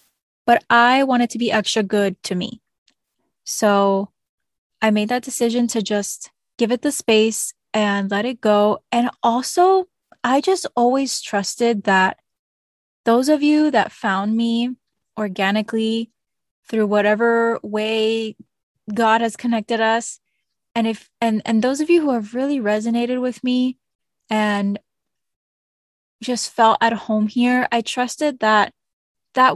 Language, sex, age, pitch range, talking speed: English, female, 20-39, 210-250 Hz, 140 wpm